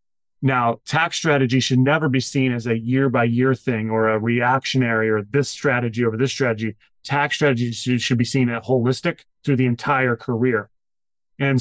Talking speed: 165 wpm